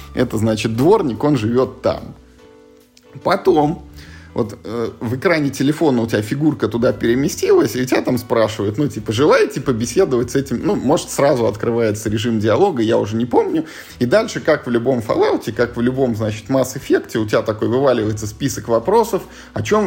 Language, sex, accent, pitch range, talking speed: Russian, male, native, 110-145 Hz, 170 wpm